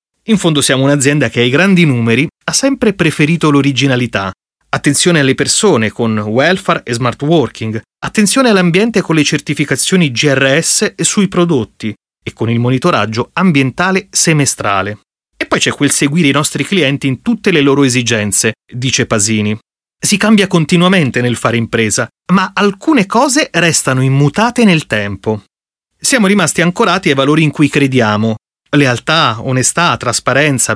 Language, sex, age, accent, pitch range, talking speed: Italian, male, 30-49, native, 125-180 Hz, 145 wpm